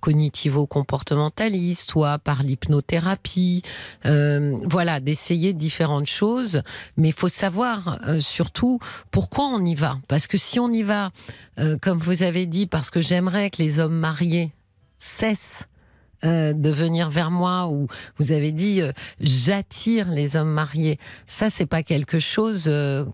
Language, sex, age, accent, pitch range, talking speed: French, female, 40-59, French, 145-180 Hz, 150 wpm